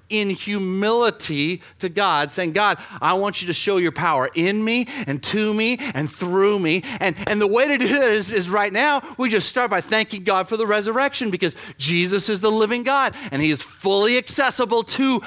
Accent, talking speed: American, 210 wpm